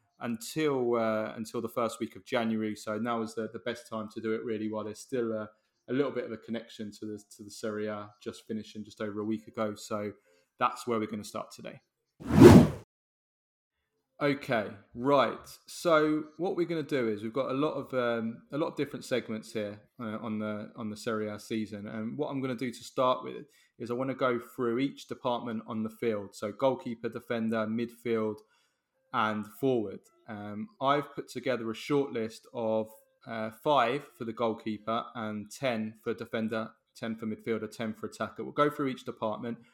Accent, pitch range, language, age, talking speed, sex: British, 110-120 Hz, English, 20-39, 200 wpm, male